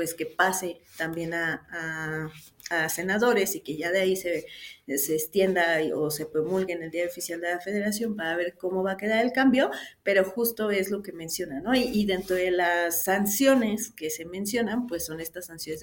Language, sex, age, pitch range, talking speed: Spanish, female, 40-59, 170-215 Hz, 205 wpm